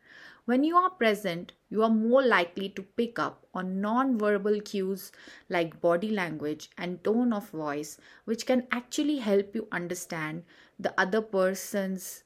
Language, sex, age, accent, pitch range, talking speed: English, female, 30-49, Indian, 185-235 Hz, 145 wpm